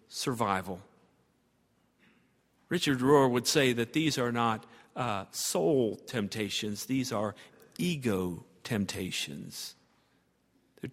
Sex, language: male, English